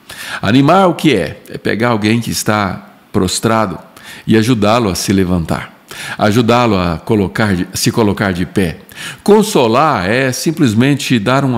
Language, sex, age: Portuguese, male, 60-79